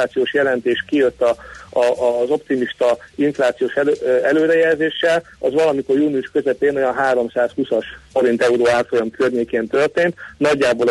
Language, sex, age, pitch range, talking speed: Hungarian, male, 40-59, 125-165 Hz, 110 wpm